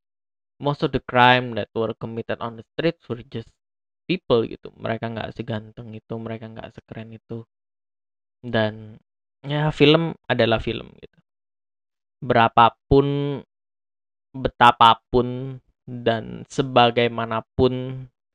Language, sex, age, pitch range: Indonesian, male, 10-29, 110-125 Hz